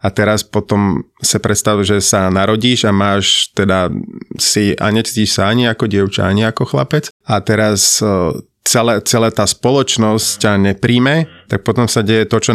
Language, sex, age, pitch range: Slovak, male, 30-49, 100-115 Hz